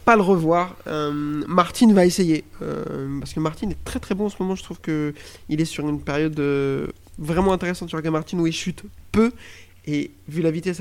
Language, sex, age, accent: French, male, 20-39, French